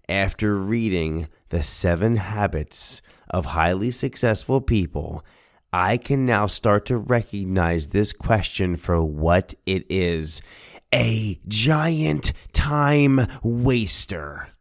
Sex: male